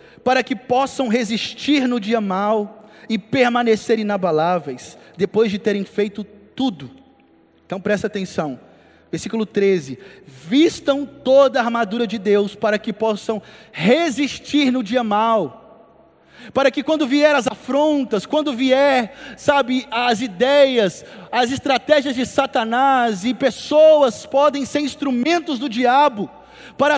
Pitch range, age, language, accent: 225-285 Hz, 20-39, Portuguese, Brazilian